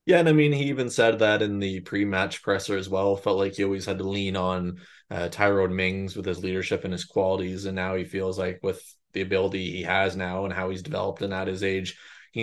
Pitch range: 95-105 Hz